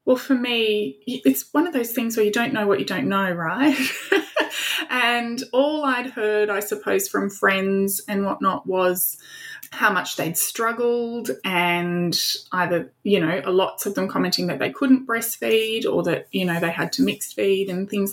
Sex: female